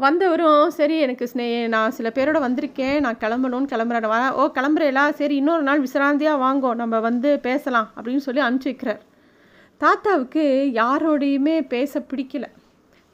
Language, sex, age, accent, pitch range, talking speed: Tamil, female, 30-49, native, 220-280 Hz, 125 wpm